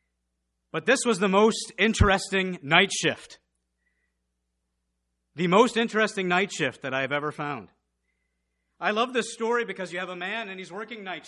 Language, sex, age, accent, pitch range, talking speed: English, male, 40-59, American, 125-180 Hz, 160 wpm